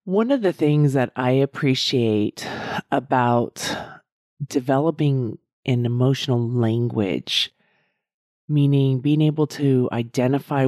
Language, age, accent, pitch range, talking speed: English, 30-49, American, 120-145 Hz, 95 wpm